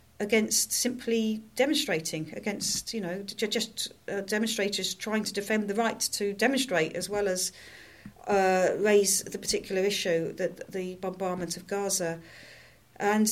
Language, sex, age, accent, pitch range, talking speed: English, female, 40-59, British, 185-220 Hz, 135 wpm